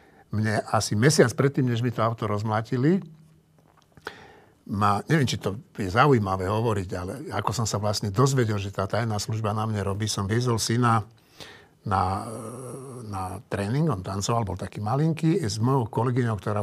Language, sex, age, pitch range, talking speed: Slovak, male, 60-79, 105-140 Hz, 160 wpm